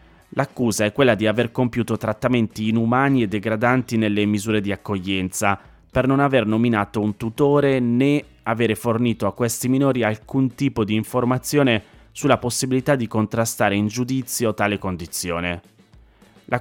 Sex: male